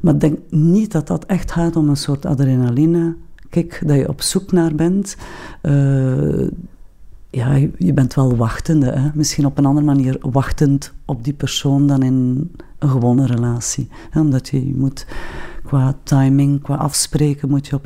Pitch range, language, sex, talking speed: 135-155 Hz, Dutch, female, 160 wpm